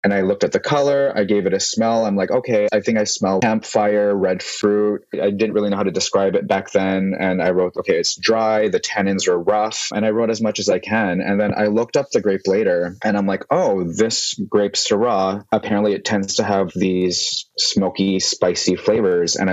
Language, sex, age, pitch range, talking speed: English, male, 20-39, 95-105 Hz, 225 wpm